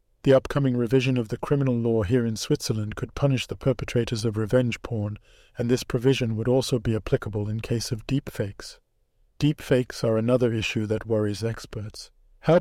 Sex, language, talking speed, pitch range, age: male, English, 170 wpm, 115-135 Hz, 50-69